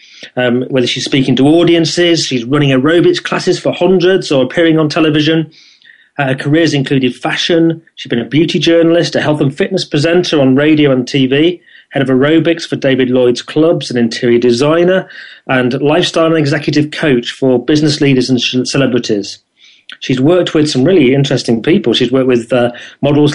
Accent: British